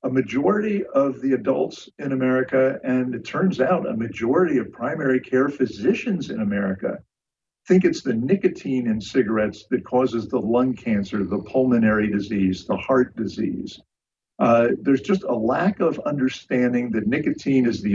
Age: 50-69